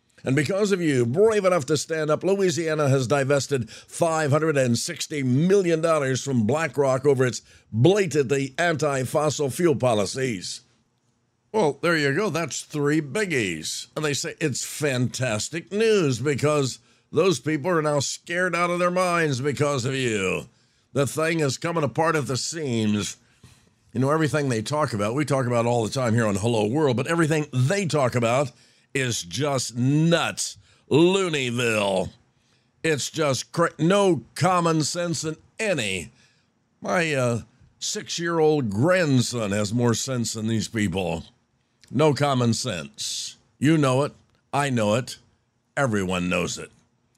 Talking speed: 140 wpm